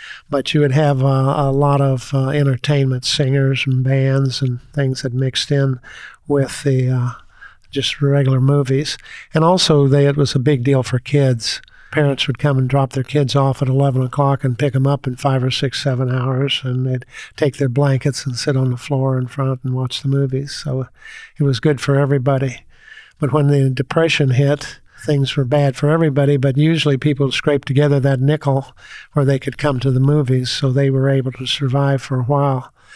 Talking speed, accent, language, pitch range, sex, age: 200 wpm, American, English, 135-145 Hz, male, 50-69